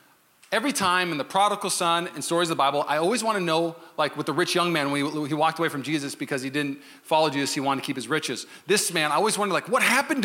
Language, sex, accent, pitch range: English, male, American, 150-190 Hz